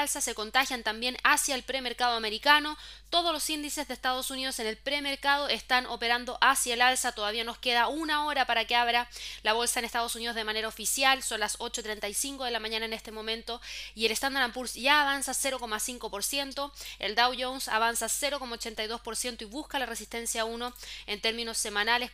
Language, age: Spanish, 20-39